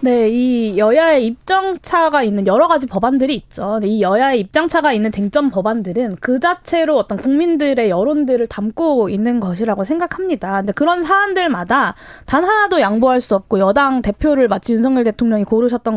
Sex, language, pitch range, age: female, Korean, 215-310 Hz, 20-39